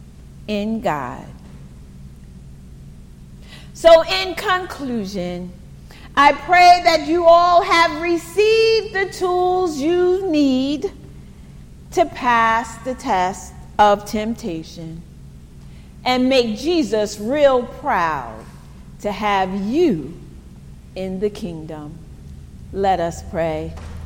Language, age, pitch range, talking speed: English, 40-59, 150-235 Hz, 90 wpm